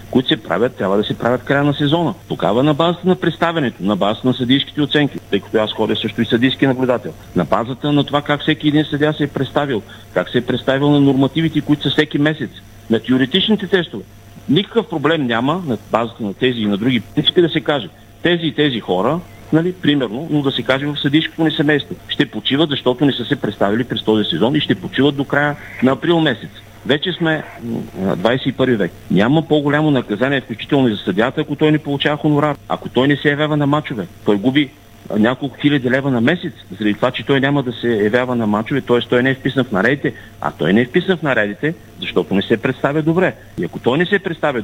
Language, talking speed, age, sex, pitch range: Bulgarian, 220 wpm, 50-69, male, 115-155 Hz